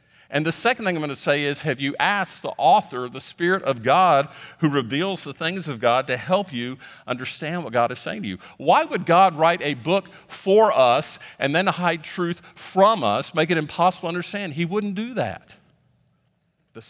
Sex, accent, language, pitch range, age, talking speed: male, American, English, 120-155 Hz, 50-69, 205 wpm